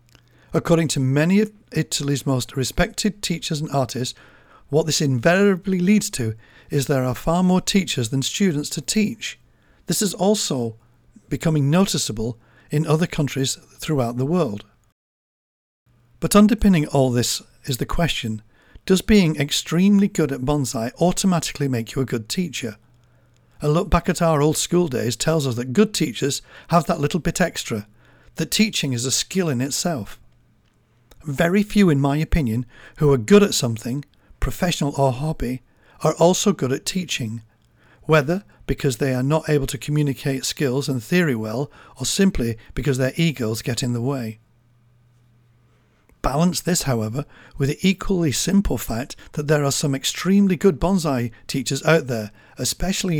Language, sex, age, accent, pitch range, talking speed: English, male, 50-69, British, 125-175 Hz, 155 wpm